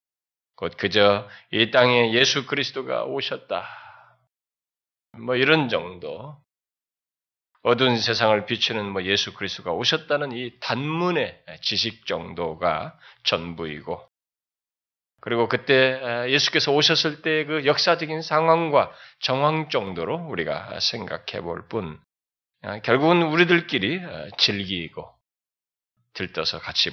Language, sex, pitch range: Korean, male, 110-155 Hz